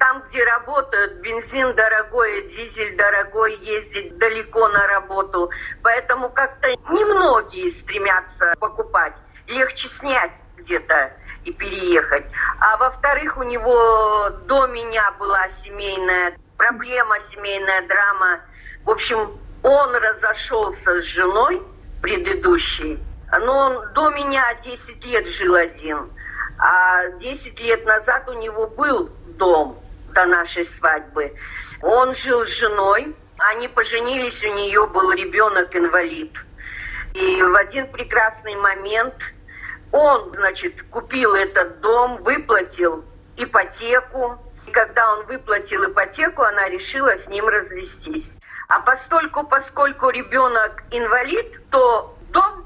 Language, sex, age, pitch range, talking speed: Russian, female, 50-69, 205-285 Hz, 110 wpm